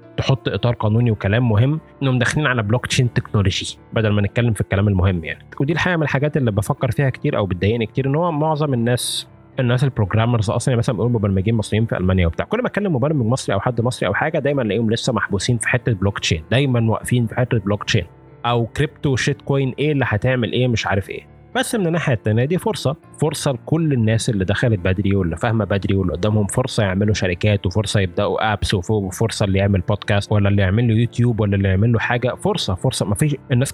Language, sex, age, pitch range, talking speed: Arabic, male, 20-39, 105-130 Hz, 205 wpm